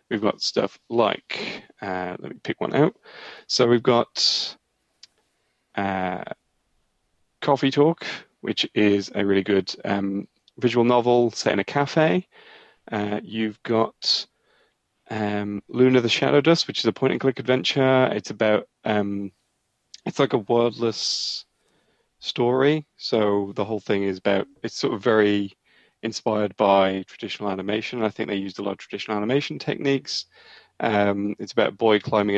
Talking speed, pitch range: 145 wpm, 100-120 Hz